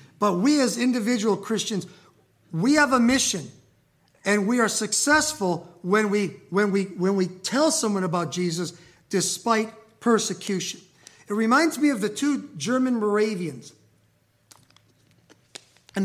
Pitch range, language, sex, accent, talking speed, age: 190-280 Hz, English, male, American, 115 wpm, 50-69